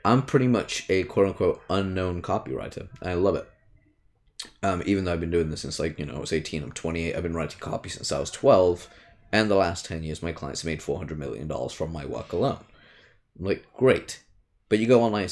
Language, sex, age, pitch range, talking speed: English, male, 20-39, 85-110 Hz, 220 wpm